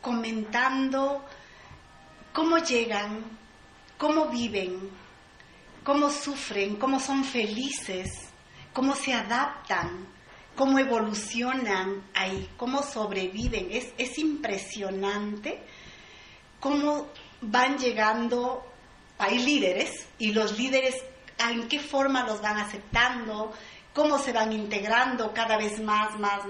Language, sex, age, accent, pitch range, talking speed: Spanish, female, 40-59, American, 215-270 Hz, 95 wpm